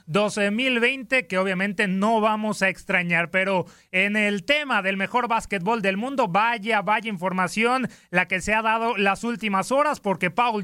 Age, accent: 30-49, Mexican